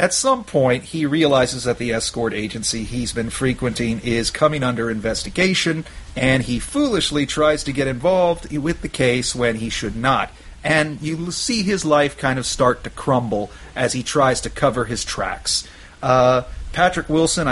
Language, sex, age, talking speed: English, male, 40-59, 170 wpm